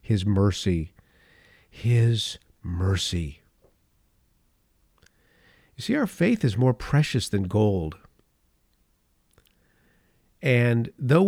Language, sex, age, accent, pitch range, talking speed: English, male, 50-69, American, 100-135 Hz, 80 wpm